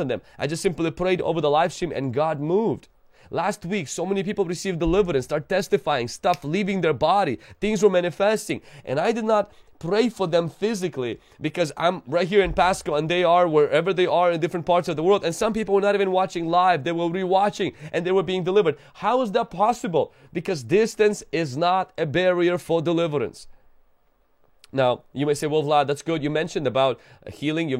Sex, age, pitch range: male, 30-49, 135-185 Hz